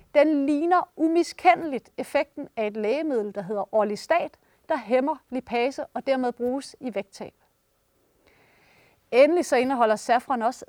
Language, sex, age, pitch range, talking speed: Danish, female, 30-49, 240-300 Hz, 130 wpm